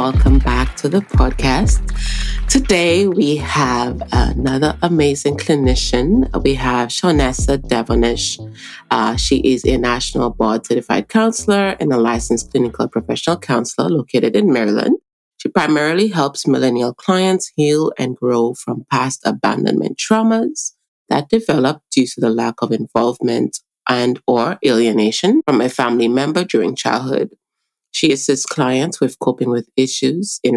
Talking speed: 135 wpm